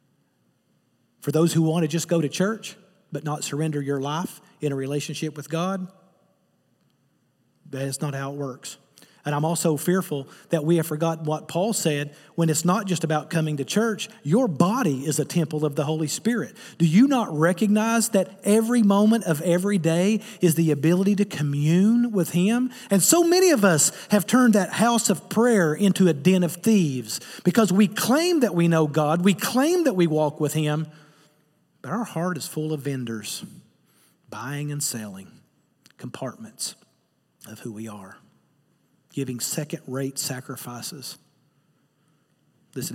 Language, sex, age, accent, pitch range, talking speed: English, male, 40-59, American, 145-185 Hz, 165 wpm